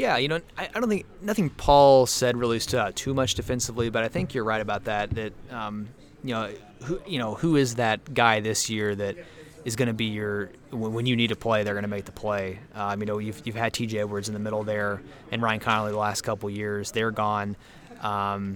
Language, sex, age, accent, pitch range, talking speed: English, male, 20-39, American, 105-125 Hz, 240 wpm